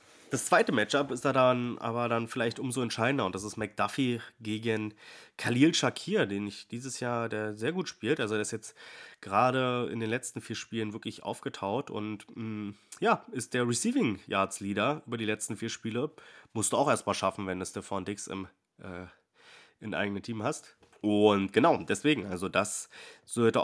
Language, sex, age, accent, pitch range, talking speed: German, male, 30-49, German, 100-120 Hz, 180 wpm